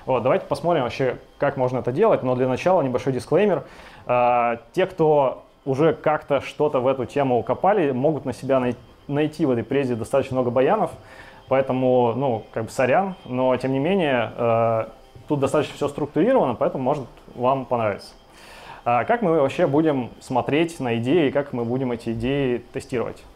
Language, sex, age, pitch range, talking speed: Russian, male, 20-39, 120-140 Hz, 170 wpm